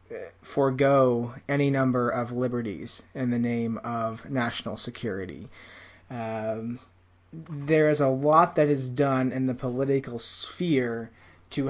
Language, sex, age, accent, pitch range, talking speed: English, male, 20-39, American, 115-145 Hz, 125 wpm